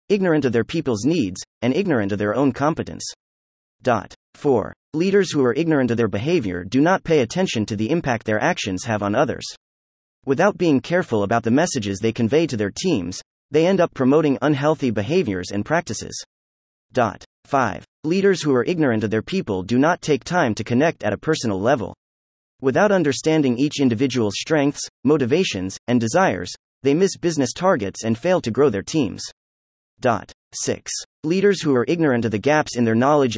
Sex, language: male, English